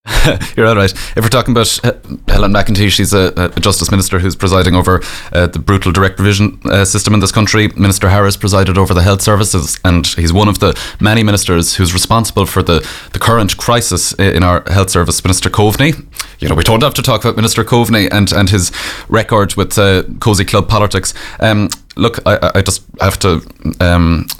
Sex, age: male, 20-39